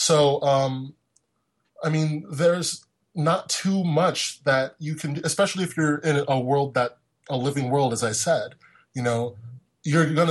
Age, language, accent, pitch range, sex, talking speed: 20-39, English, American, 125-150 Hz, male, 165 wpm